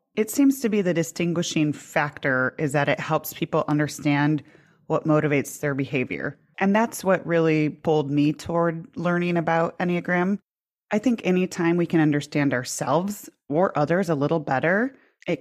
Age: 30-49